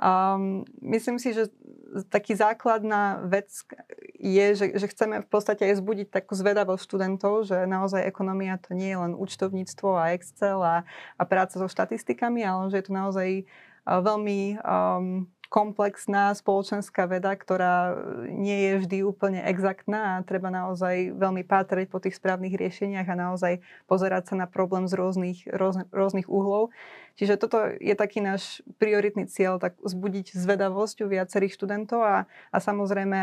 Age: 20-39